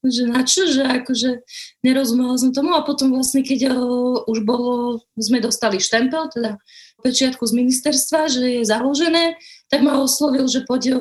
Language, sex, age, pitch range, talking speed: Slovak, female, 20-39, 230-270 Hz, 160 wpm